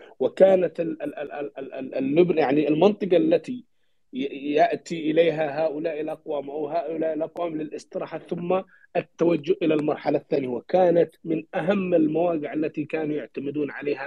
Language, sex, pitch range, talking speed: English, male, 155-195 Hz, 110 wpm